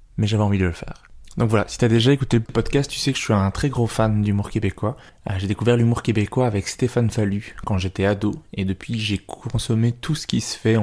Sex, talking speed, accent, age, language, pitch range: male, 245 wpm, French, 20-39, French, 100-115 Hz